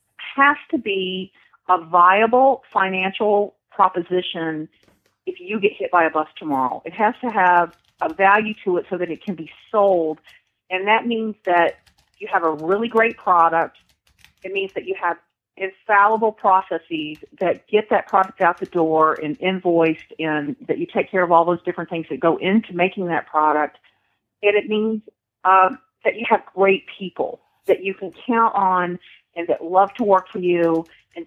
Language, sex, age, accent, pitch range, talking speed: English, female, 40-59, American, 170-205 Hz, 180 wpm